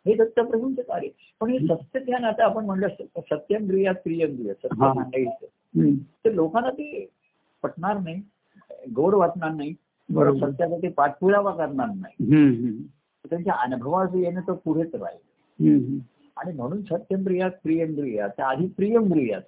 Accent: native